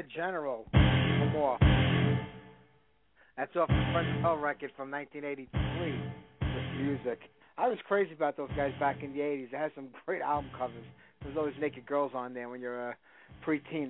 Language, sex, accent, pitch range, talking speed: English, male, American, 125-150 Hz, 175 wpm